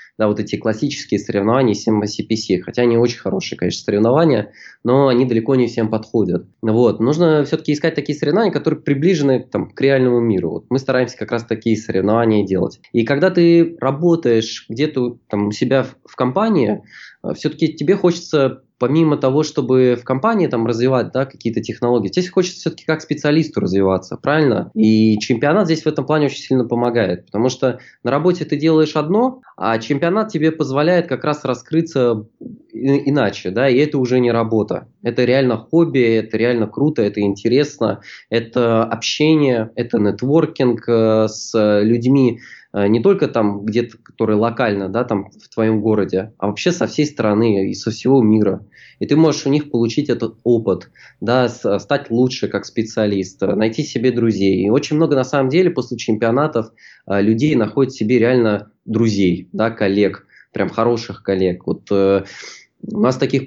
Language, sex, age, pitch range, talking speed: Russian, male, 20-39, 110-145 Hz, 160 wpm